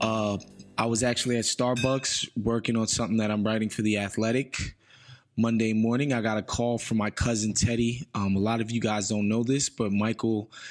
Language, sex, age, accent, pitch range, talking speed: English, male, 20-39, American, 105-120 Hz, 200 wpm